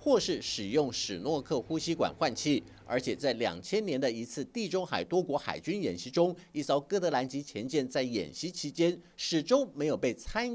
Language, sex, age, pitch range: Chinese, male, 50-69, 140-210 Hz